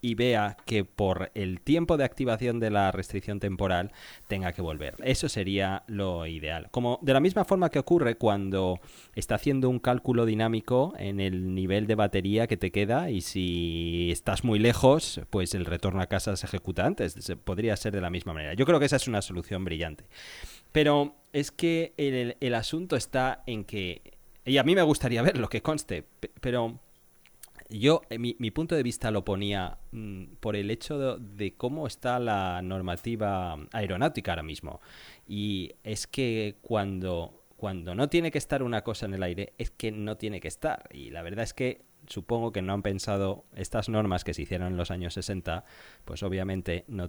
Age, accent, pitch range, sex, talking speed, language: 30-49, Spanish, 90-120 Hz, male, 190 wpm, Spanish